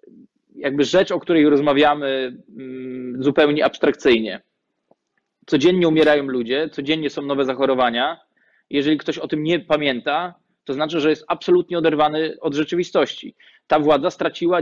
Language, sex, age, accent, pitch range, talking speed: Polish, male, 20-39, native, 140-165 Hz, 125 wpm